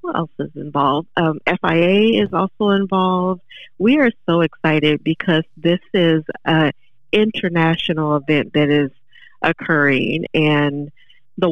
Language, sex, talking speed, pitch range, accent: English, female, 120 wpm, 150-180 Hz, American